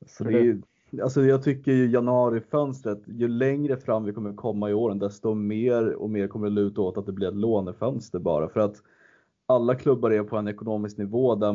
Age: 20-39